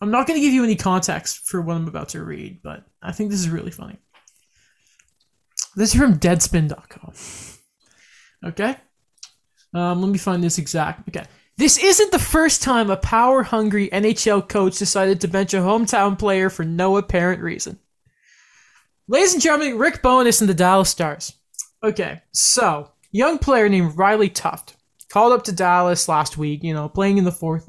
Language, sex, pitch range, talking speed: English, male, 170-205 Hz, 175 wpm